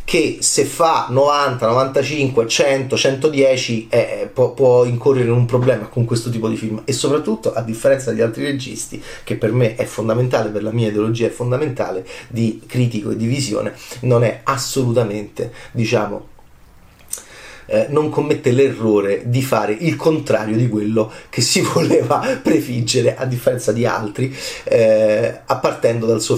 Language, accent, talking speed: Italian, native, 150 wpm